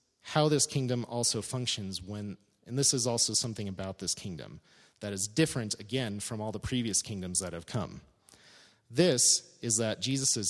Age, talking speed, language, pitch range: 30-49, 170 wpm, English, 110-135 Hz